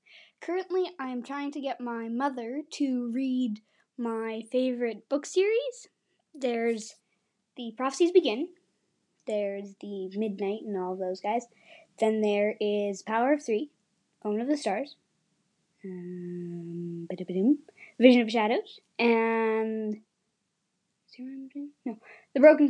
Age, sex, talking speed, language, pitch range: 20-39, female, 115 wpm, English, 205-290 Hz